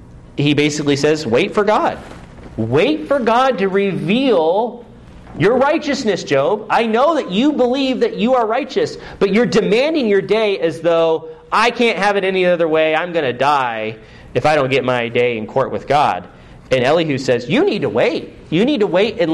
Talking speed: 195 wpm